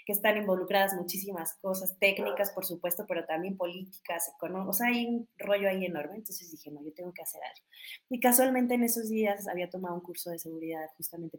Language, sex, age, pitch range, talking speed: Spanish, female, 20-39, 170-210 Hz, 200 wpm